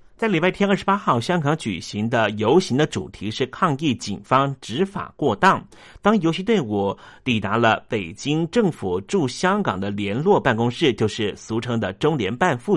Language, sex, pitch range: Chinese, male, 110-145 Hz